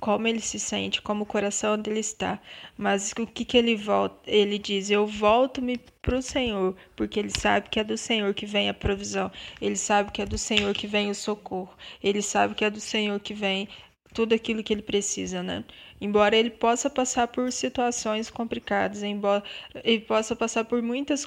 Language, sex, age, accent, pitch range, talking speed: Portuguese, female, 20-39, Brazilian, 200-230 Hz, 195 wpm